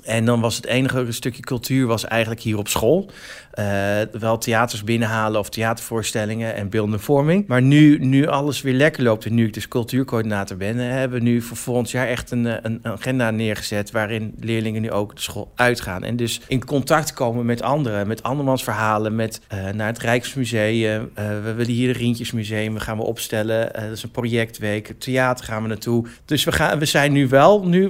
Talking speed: 200 wpm